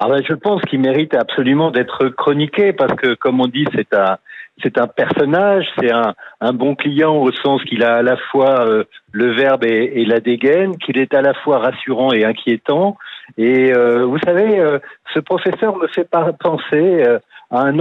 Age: 50-69